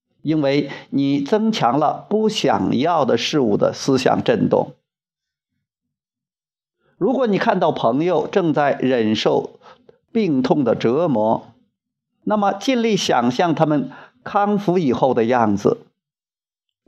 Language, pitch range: Chinese, 145-220 Hz